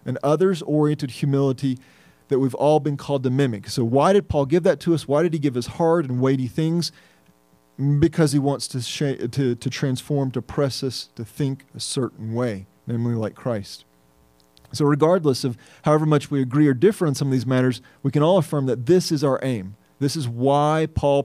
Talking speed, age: 205 wpm, 40-59